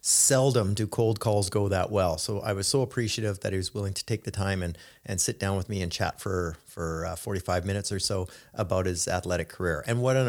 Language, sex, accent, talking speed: English, male, American, 245 wpm